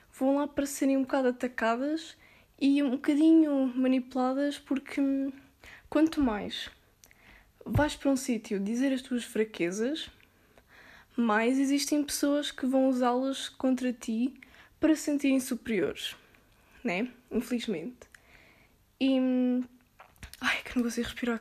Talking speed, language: 120 wpm, Portuguese